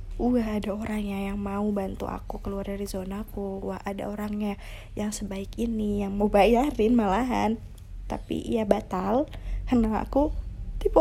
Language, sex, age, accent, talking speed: Indonesian, female, 20-39, native, 145 wpm